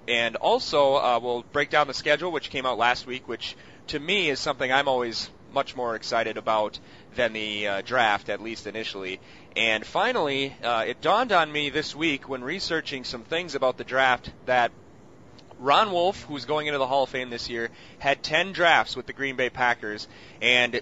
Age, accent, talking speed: 30-49, American, 195 wpm